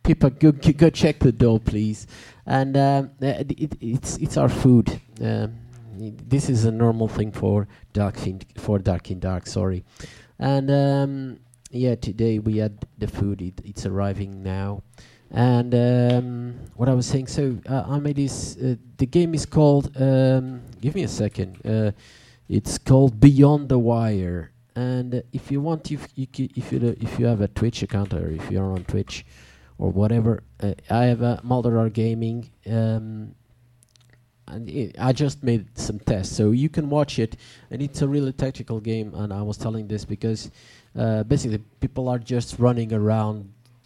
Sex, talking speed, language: male, 180 wpm, English